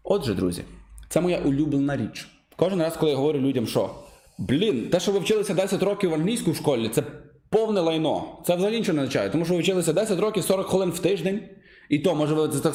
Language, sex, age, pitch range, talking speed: Ukrainian, male, 20-39, 150-205 Hz, 210 wpm